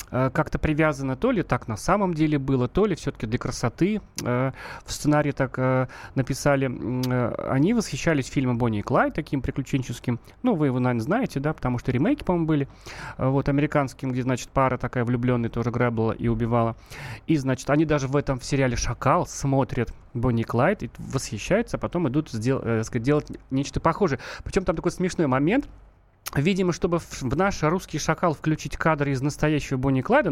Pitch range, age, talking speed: 125-165 Hz, 30-49, 175 wpm